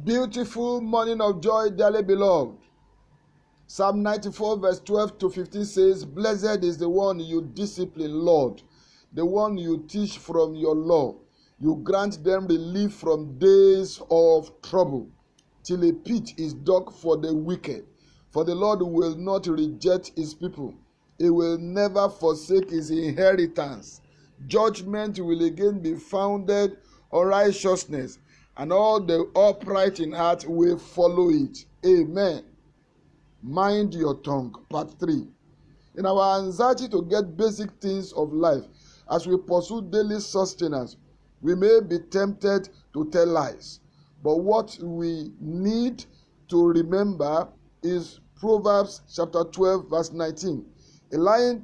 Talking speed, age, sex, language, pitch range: 130 wpm, 50-69, male, English, 165-205 Hz